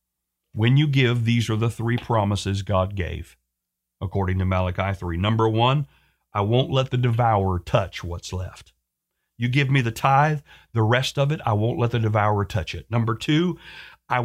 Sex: male